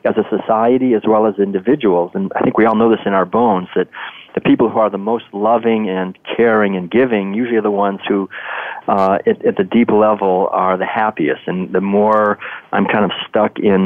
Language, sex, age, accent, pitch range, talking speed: English, male, 40-59, American, 95-110 Hz, 220 wpm